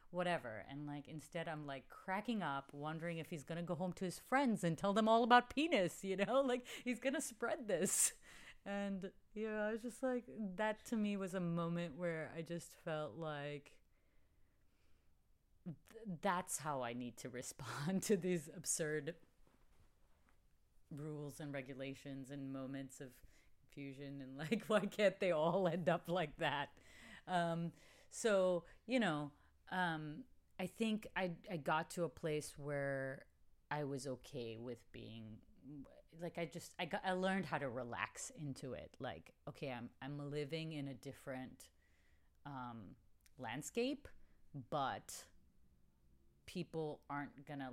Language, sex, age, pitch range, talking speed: English, female, 30-49, 135-185 Hz, 150 wpm